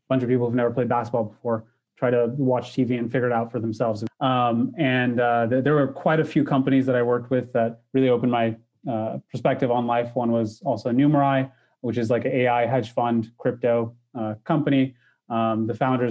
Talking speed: 210 wpm